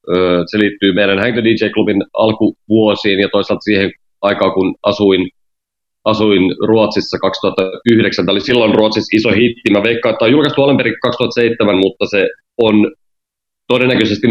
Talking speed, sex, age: 140 wpm, male, 30-49